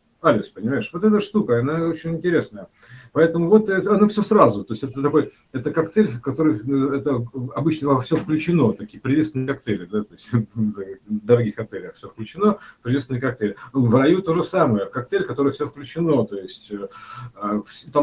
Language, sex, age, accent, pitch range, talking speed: Russian, male, 50-69, native, 110-150 Hz, 175 wpm